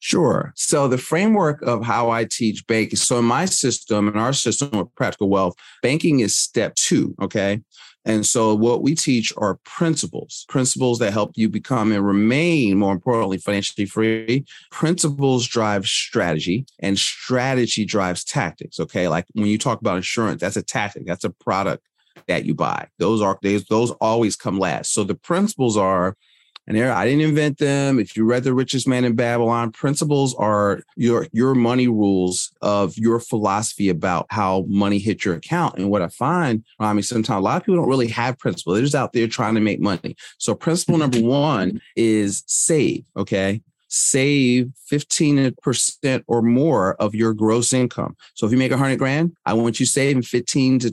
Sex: male